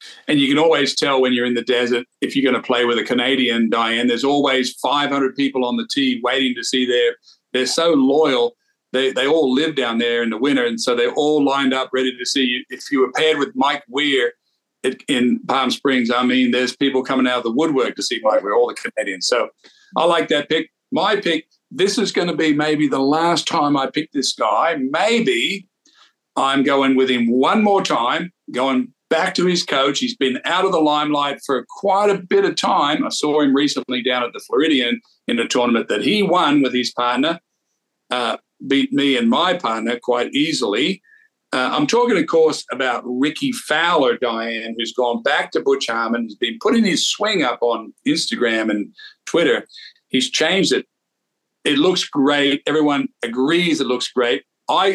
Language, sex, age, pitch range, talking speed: English, male, 50-69, 125-180 Hz, 205 wpm